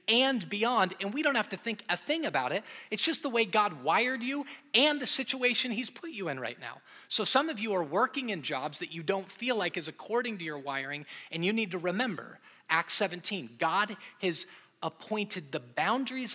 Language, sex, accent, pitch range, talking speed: English, male, American, 160-225 Hz, 215 wpm